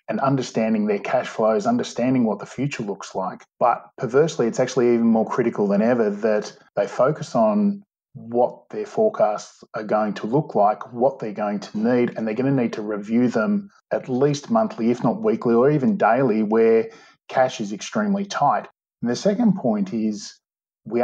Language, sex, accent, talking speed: English, male, Australian, 185 wpm